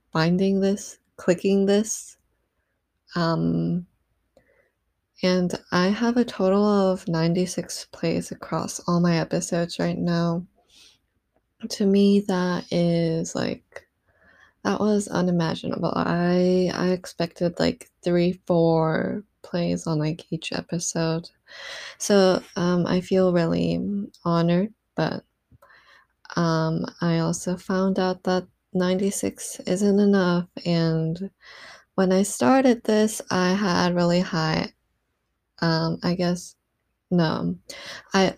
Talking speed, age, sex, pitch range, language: 105 wpm, 20-39, female, 165-195 Hz, English